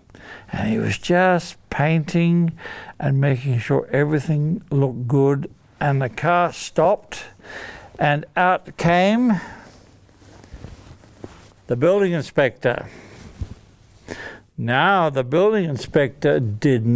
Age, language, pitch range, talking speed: 60-79, English, 140-180 Hz, 90 wpm